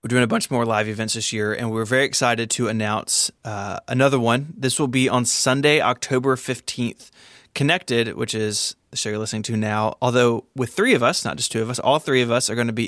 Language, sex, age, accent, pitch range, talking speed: English, male, 20-39, American, 115-135 Hz, 240 wpm